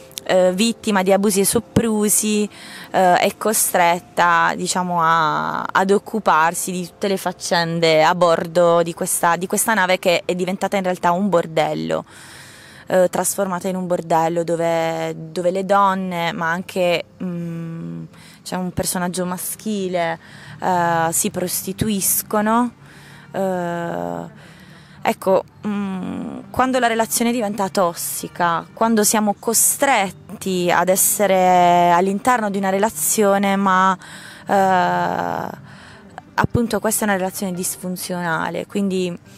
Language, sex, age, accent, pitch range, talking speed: Italian, female, 20-39, native, 175-205 Hz, 115 wpm